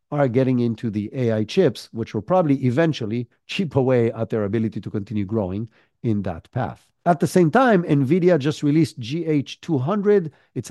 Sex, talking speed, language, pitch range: male, 170 wpm, English, 120-160 Hz